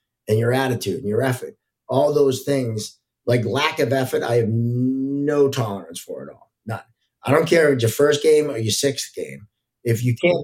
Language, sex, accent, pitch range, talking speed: English, male, American, 115-145 Hz, 205 wpm